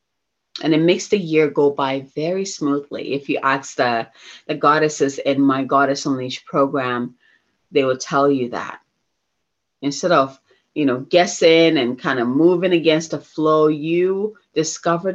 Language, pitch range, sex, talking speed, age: English, 140-175 Hz, female, 160 wpm, 30-49